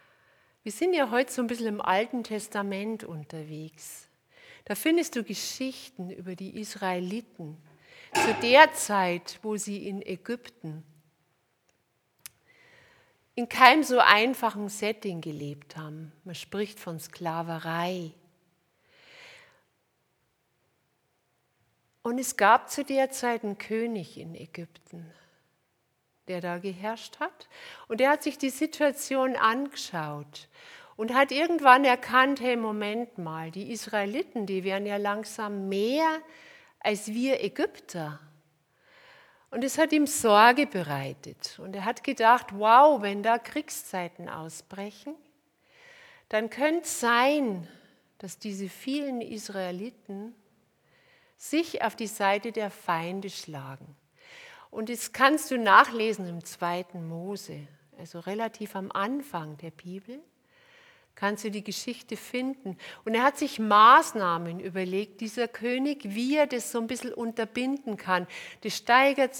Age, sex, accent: 60-79, female, German